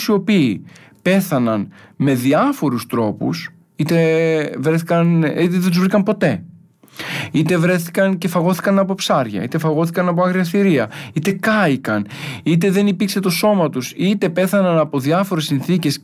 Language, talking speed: Greek, 140 wpm